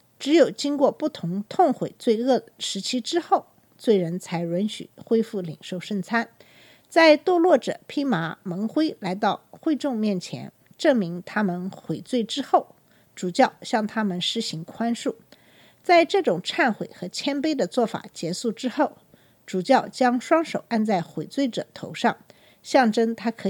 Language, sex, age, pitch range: Chinese, female, 50-69, 195-280 Hz